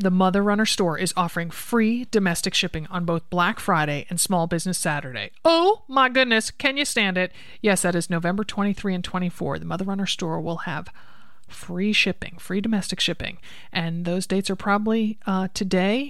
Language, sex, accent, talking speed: English, male, American, 185 wpm